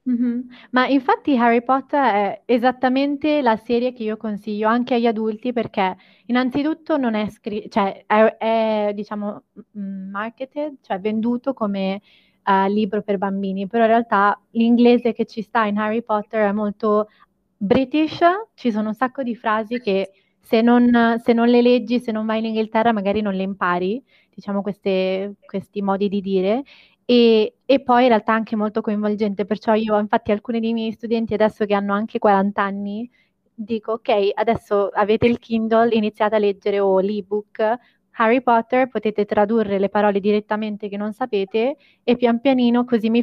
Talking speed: 170 wpm